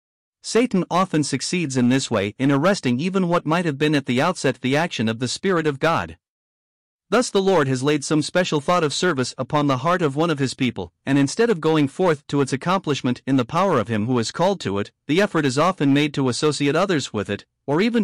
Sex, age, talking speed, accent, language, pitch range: male, 50-69, 235 wpm, American, English, 125-175 Hz